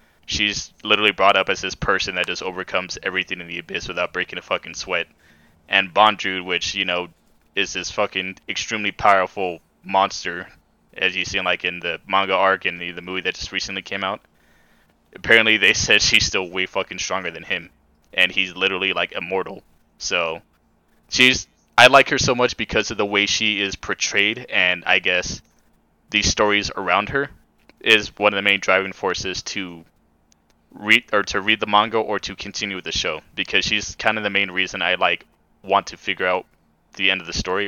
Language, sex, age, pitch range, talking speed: English, male, 20-39, 85-100 Hz, 190 wpm